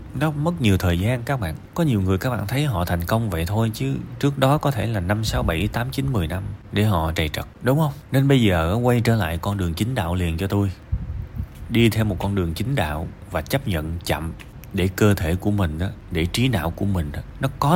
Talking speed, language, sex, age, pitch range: 255 wpm, Vietnamese, male, 30-49, 85-115 Hz